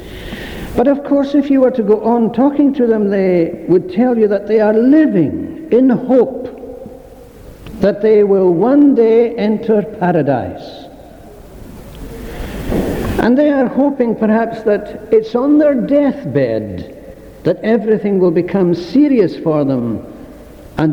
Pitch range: 185-265 Hz